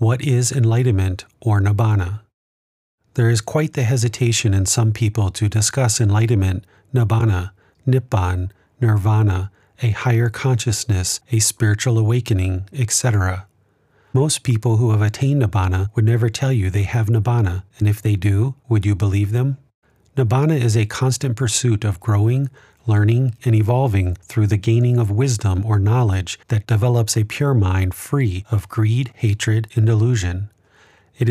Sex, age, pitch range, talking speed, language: male, 40-59, 105-120 Hz, 145 wpm, English